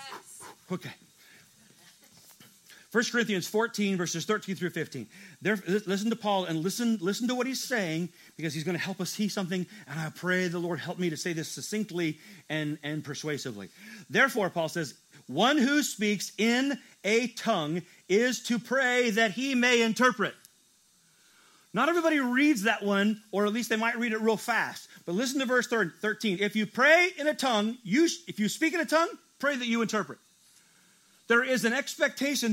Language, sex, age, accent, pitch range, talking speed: English, male, 40-59, American, 195-260 Hz, 180 wpm